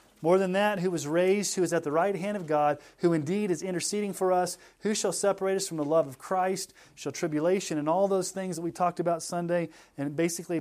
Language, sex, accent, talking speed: English, male, American, 240 wpm